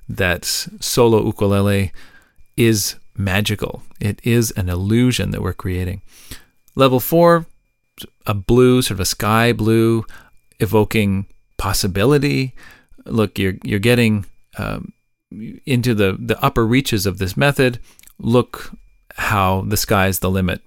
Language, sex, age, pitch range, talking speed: English, male, 40-59, 100-120 Hz, 120 wpm